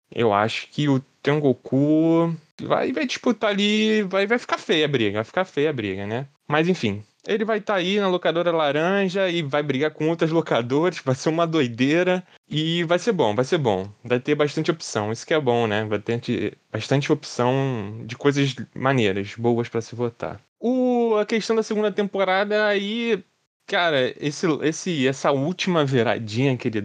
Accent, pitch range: Brazilian, 115-180 Hz